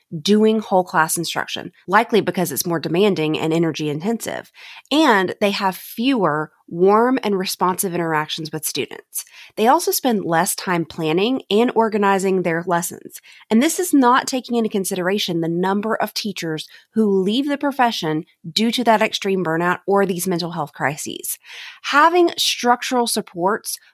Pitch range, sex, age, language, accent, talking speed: 175-240 Hz, female, 30-49, English, American, 150 wpm